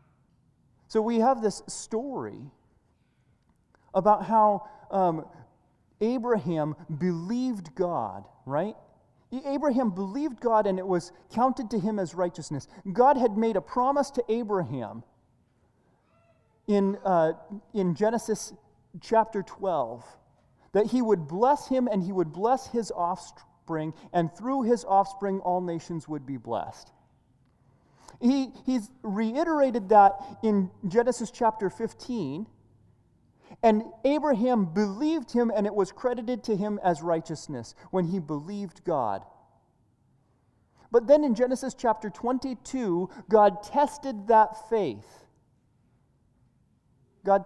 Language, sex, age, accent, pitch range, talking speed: English, male, 30-49, American, 175-235 Hz, 115 wpm